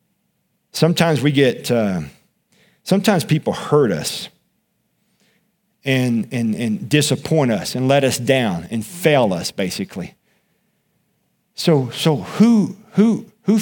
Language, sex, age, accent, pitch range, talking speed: English, male, 50-69, American, 130-185 Hz, 115 wpm